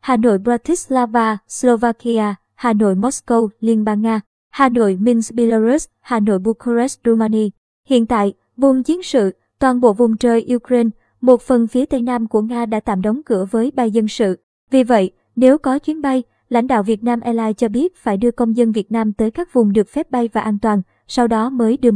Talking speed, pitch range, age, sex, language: 205 wpm, 220-250 Hz, 20-39, male, Vietnamese